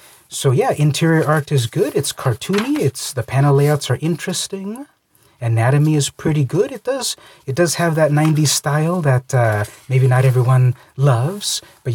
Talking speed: 165 wpm